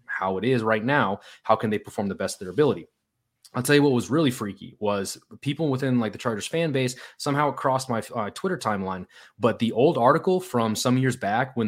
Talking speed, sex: 225 wpm, male